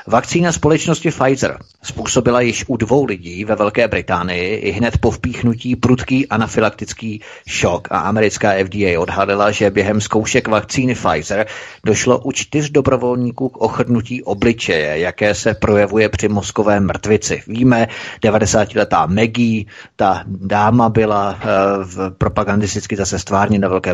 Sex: male